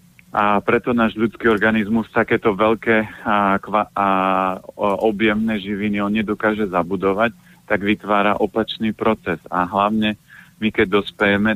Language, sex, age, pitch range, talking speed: Slovak, male, 40-59, 100-115 Hz, 125 wpm